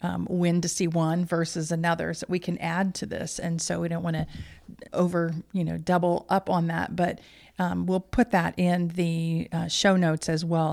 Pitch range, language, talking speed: 155-175 Hz, English, 215 wpm